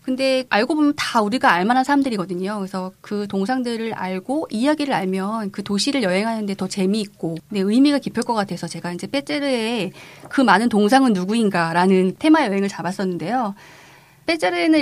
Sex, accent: female, native